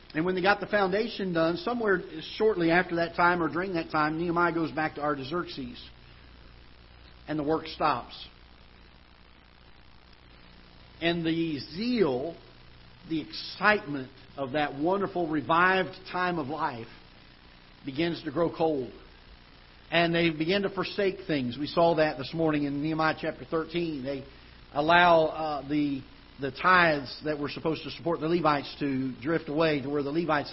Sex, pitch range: male, 135-175 Hz